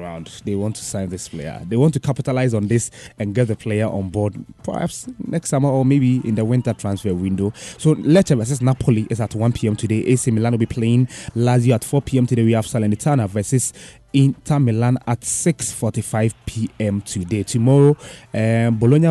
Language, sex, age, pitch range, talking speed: English, male, 20-39, 110-130 Hz, 180 wpm